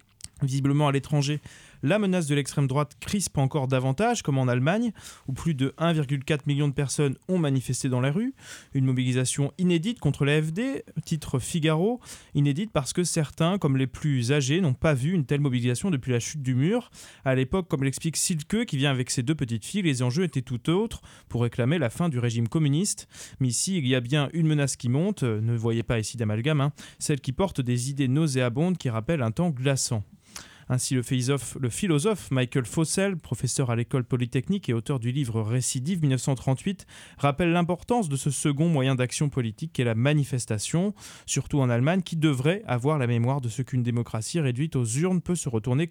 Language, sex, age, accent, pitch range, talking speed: French, male, 20-39, French, 125-160 Hz, 190 wpm